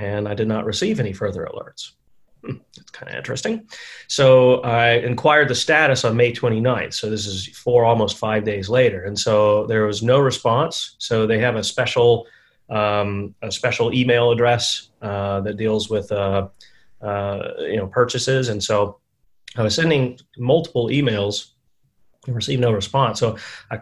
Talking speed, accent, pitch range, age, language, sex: 165 wpm, American, 105-125 Hz, 30-49, English, male